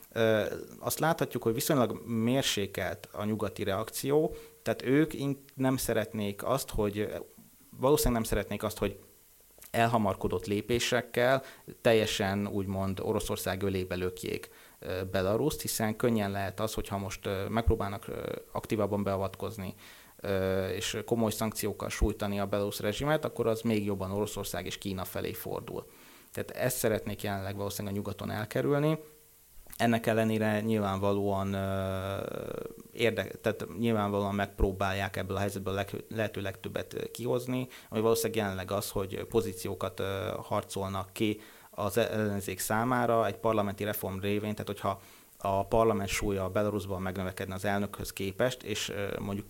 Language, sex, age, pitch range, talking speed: Hungarian, male, 30-49, 100-115 Hz, 125 wpm